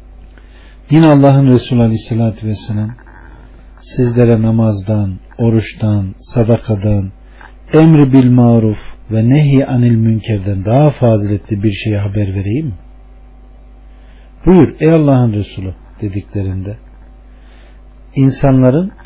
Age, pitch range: 50-69, 100-140 Hz